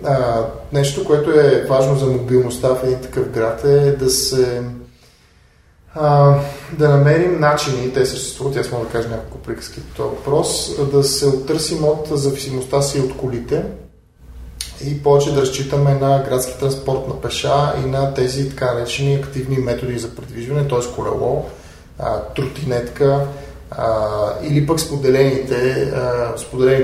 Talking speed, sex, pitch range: 135 wpm, male, 125-140 Hz